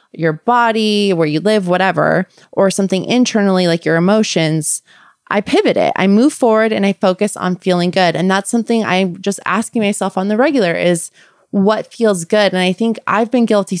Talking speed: 190 wpm